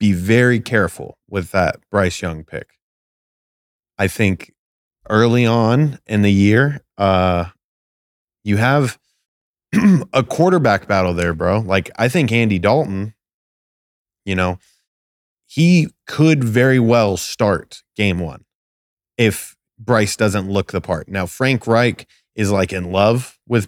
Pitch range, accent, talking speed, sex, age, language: 95-125 Hz, American, 130 wpm, male, 20-39, English